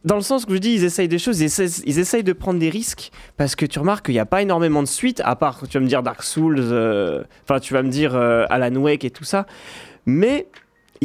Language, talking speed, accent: French, 275 wpm, French